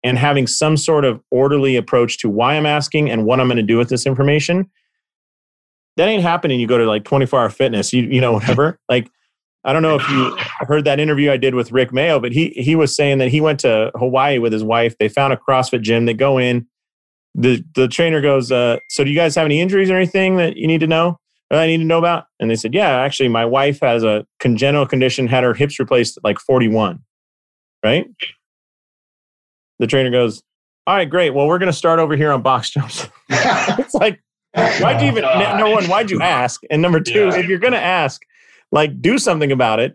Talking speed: 230 wpm